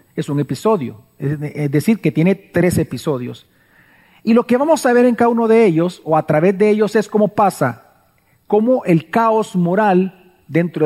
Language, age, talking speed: Spanish, 40-59, 180 wpm